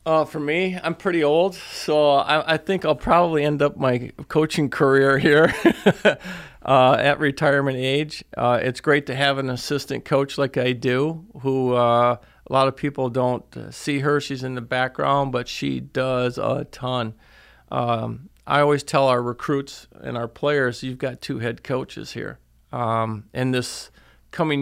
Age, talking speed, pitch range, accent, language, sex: 40-59, 170 wpm, 125-145 Hz, American, English, male